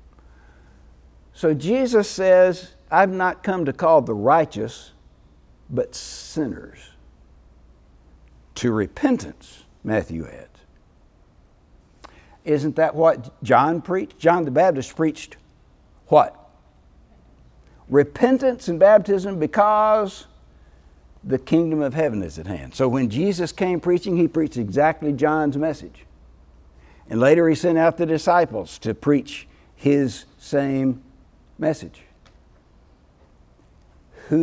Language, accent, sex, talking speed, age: English, American, male, 105 wpm, 60-79